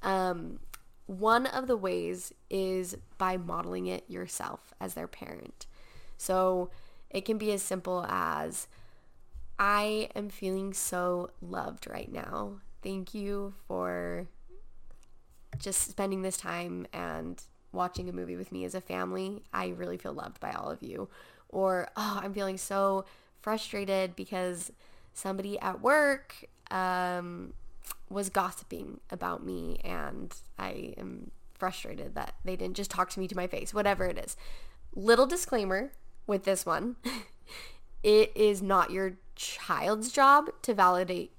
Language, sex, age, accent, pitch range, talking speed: English, female, 10-29, American, 180-210 Hz, 140 wpm